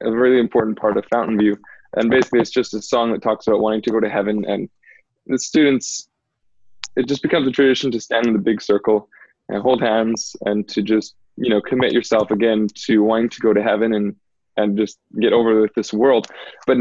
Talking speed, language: 220 wpm, English